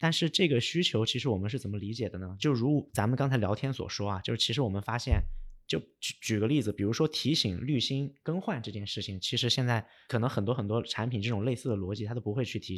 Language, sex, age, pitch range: Chinese, male, 20-39, 105-135 Hz